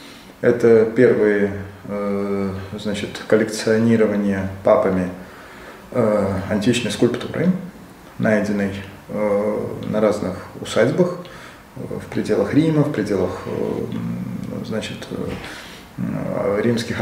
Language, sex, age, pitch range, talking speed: Russian, male, 20-39, 110-160 Hz, 55 wpm